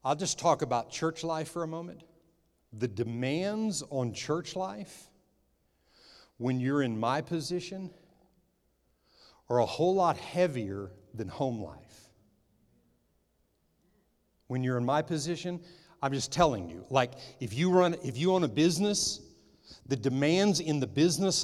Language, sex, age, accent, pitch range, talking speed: English, male, 60-79, American, 125-180 Hz, 140 wpm